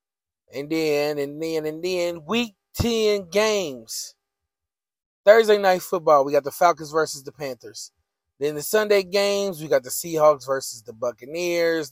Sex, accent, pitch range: male, American, 130-185 Hz